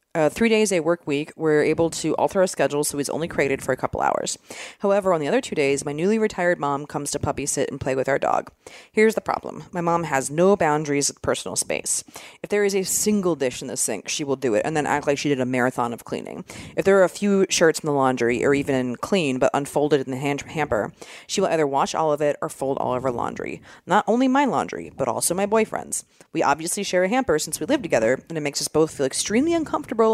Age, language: 30-49, English